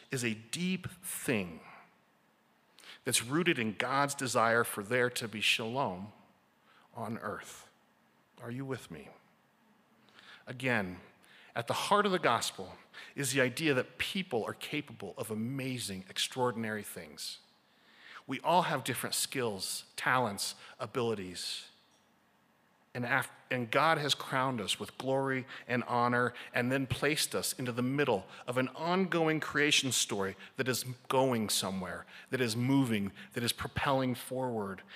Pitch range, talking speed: 120-150 Hz, 135 wpm